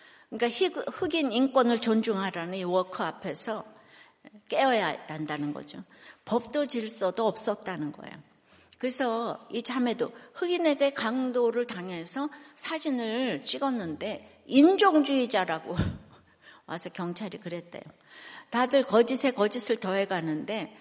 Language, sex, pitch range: Korean, female, 195-270 Hz